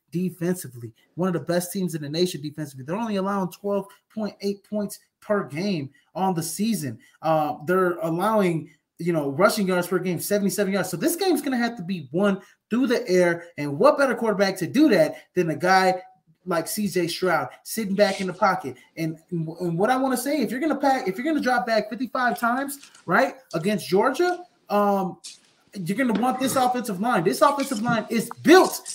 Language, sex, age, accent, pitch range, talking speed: English, male, 20-39, American, 175-255 Hz, 200 wpm